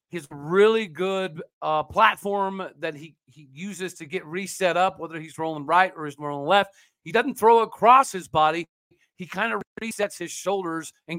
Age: 40-59